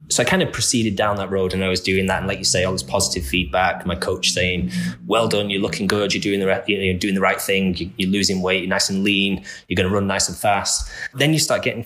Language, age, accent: English, 20-39, British